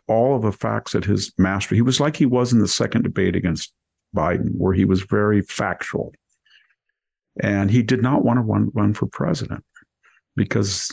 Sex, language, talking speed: male, English, 185 wpm